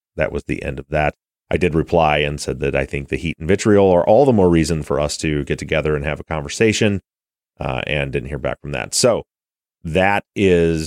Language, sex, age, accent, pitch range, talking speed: English, male, 30-49, American, 80-105 Hz, 230 wpm